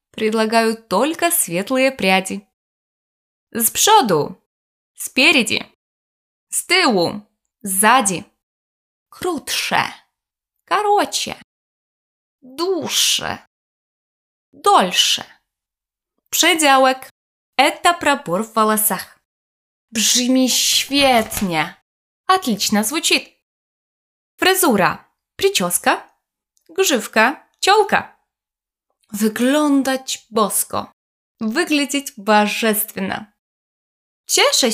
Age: 20-39